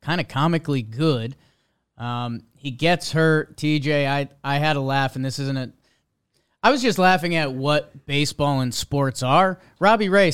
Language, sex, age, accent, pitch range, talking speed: English, male, 30-49, American, 135-170 Hz, 175 wpm